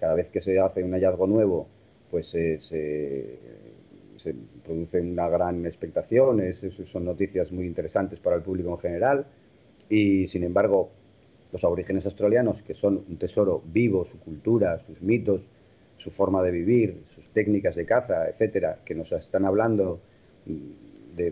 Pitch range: 90-110 Hz